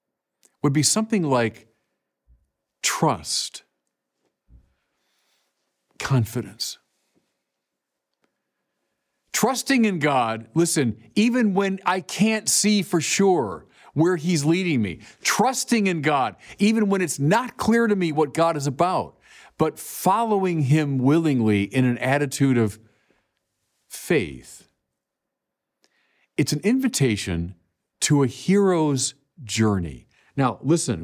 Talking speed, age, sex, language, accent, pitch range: 100 wpm, 50-69, male, English, American, 115-180 Hz